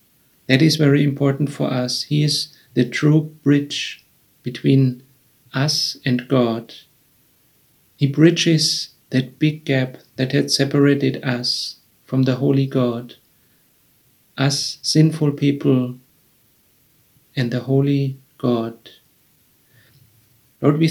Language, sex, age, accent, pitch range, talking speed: English, male, 50-69, German, 125-145 Hz, 105 wpm